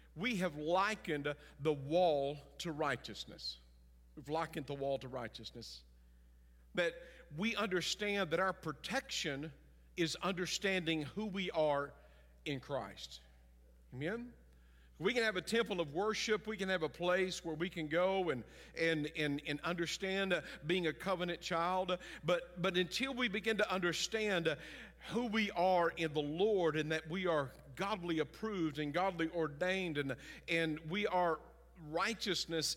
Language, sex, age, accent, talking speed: English, male, 50-69, American, 145 wpm